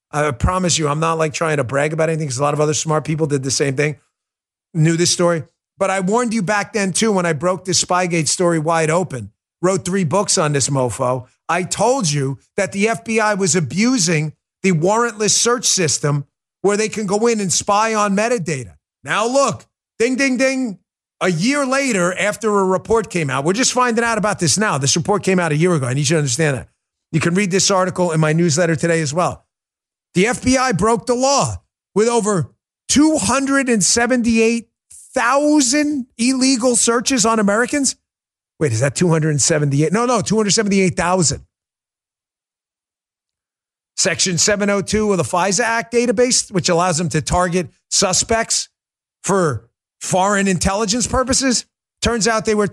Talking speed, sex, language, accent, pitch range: 170 wpm, male, English, American, 160-225 Hz